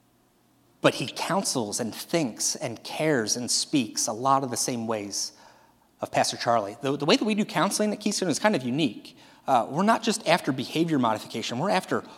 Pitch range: 115-145 Hz